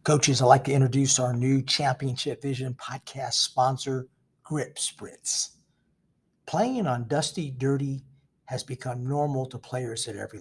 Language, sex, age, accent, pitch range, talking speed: English, male, 50-69, American, 125-160 Hz, 140 wpm